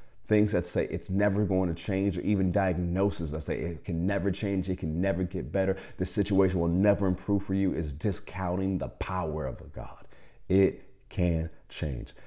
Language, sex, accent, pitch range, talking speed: English, male, American, 75-95 Hz, 185 wpm